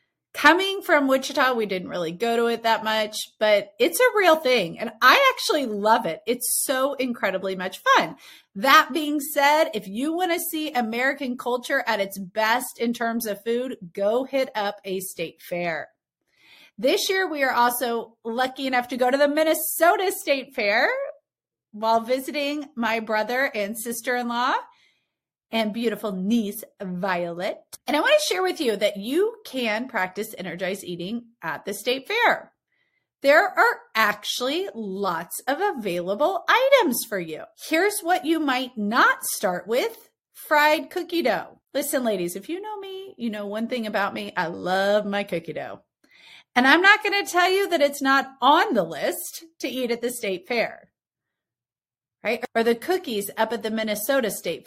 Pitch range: 210-310 Hz